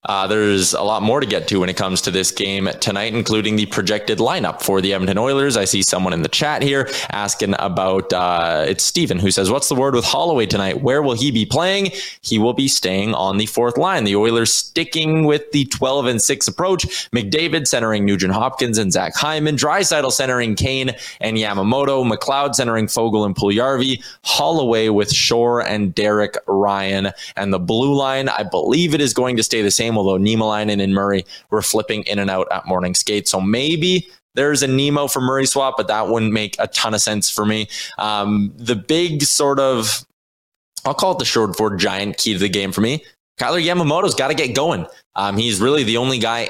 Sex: male